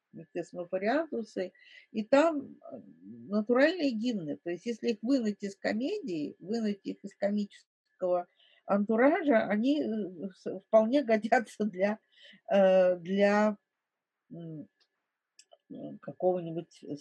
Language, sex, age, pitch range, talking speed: Russian, female, 50-69, 185-230 Hz, 80 wpm